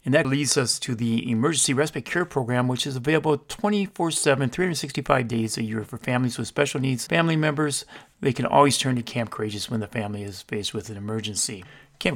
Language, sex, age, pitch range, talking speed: English, male, 40-59, 120-155 Hz, 200 wpm